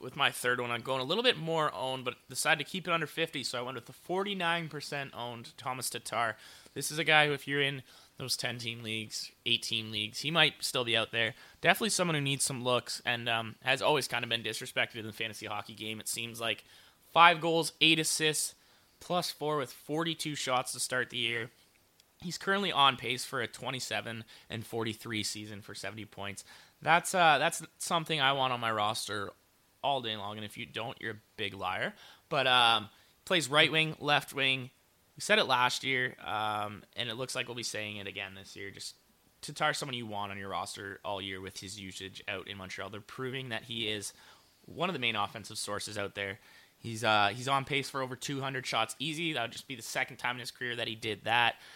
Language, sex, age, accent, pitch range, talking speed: English, male, 20-39, American, 110-145 Hz, 225 wpm